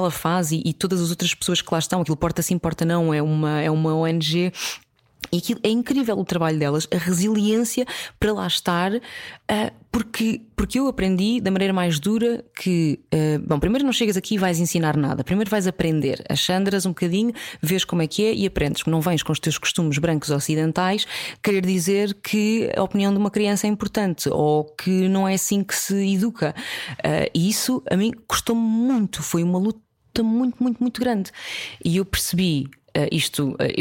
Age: 20-39